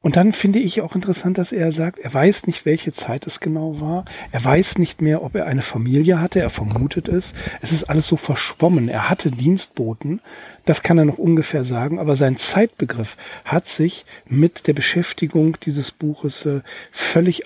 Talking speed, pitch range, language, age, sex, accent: 185 wpm, 135-175 Hz, German, 40-59, male, German